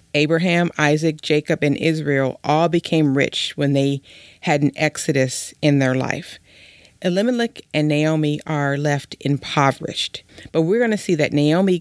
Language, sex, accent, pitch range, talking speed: English, female, American, 145-170 Hz, 145 wpm